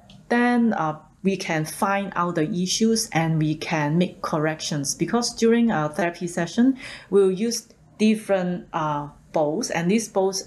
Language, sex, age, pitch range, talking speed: English, female, 30-49, 160-215 Hz, 150 wpm